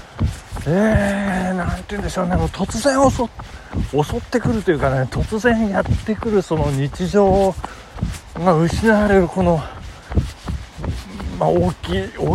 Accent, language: native, Japanese